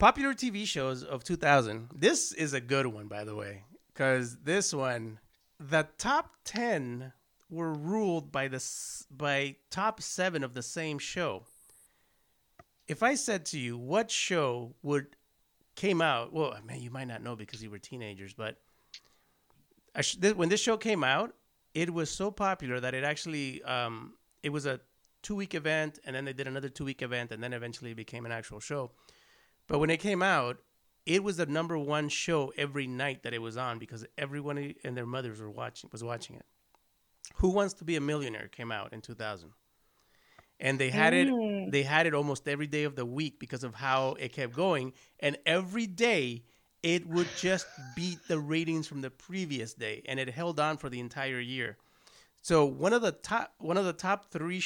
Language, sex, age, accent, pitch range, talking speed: English, male, 30-49, American, 125-165 Hz, 195 wpm